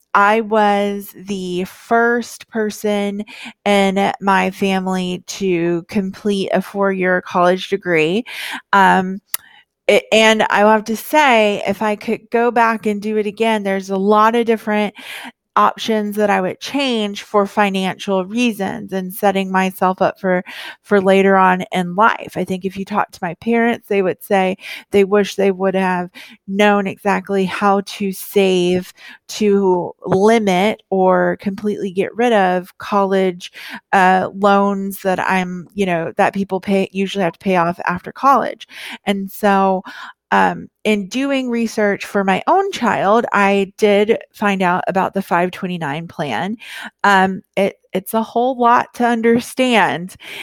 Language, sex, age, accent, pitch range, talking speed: English, female, 30-49, American, 190-220 Hz, 145 wpm